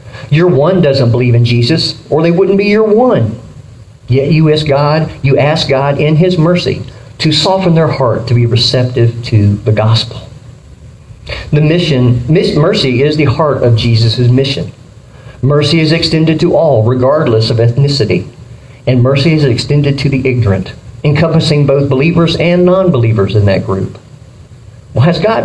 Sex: male